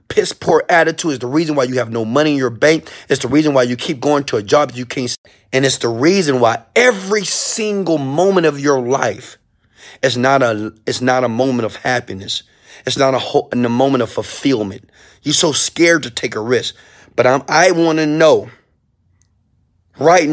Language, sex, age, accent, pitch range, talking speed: English, male, 30-49, American, 135-230 Hz, 205 wpm